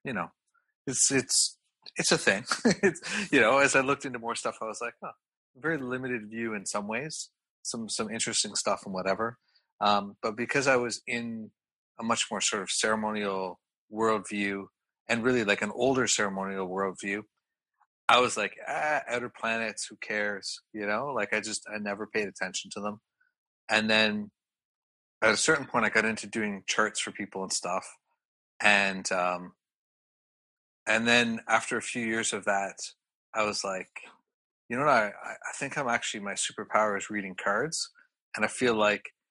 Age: 30-49